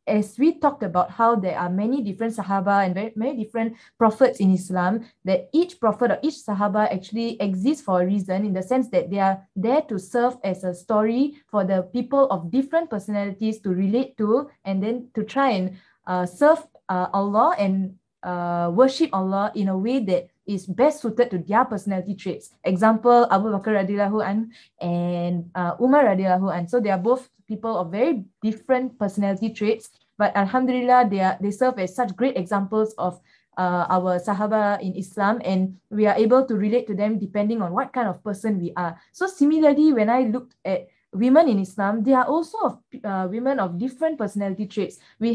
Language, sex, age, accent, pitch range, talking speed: English, female, 20-39, Malaysian, 190-245 Hz, 190 wpm